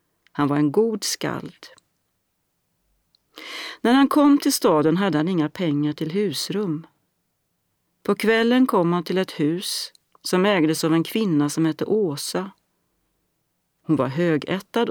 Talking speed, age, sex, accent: 135 wpm, 40-59, female, native